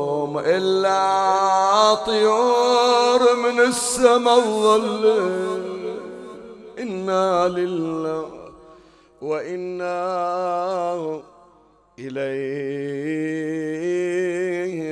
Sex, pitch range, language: male, 155-190 Hz, Arabic